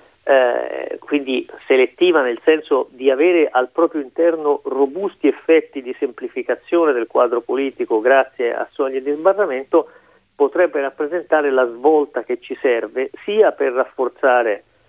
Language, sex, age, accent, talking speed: Italian, male, 40-59, native, 130 wpm